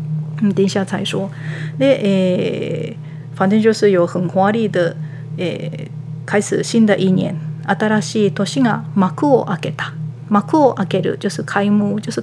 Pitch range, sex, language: 155-215 Hz, female, Japanese